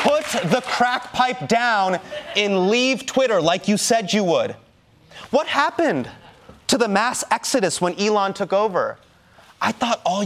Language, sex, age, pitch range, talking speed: English, male, 30-49, 190-305 Hz, 150 wpm